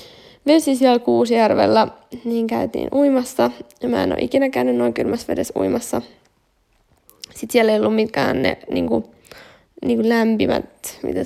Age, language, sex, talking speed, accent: 10-29, Finnish, female, 145 wpm, native